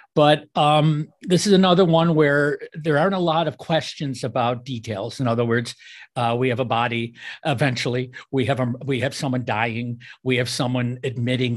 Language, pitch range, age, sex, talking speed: English, 115-145 Hz, 50-69, male, 180 wpm